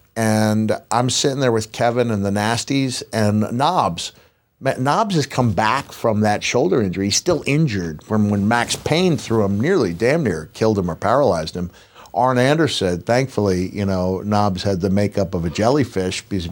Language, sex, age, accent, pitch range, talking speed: English, male, 50-69, American, 95-115 Hz, 180 wpm